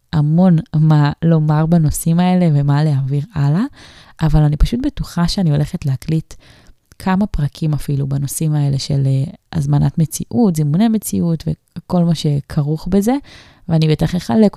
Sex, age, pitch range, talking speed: female, 20-39, 145-180 Hz, 135 wpm